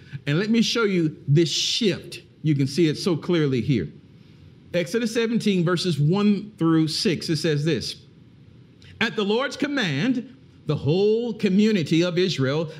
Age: 50-69